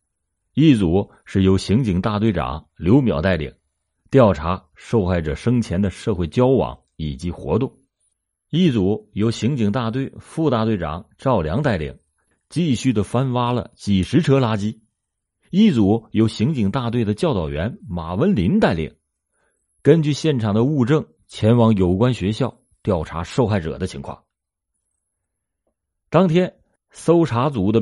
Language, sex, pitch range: Chinese, male, 90-120 Hz